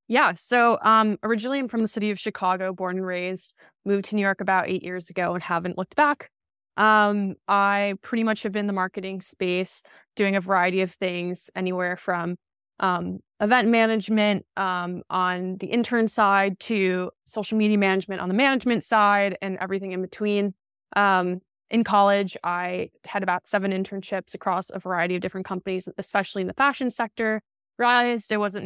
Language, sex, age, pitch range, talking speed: English, female, 20-39, 185-215 Hz, 175 wpm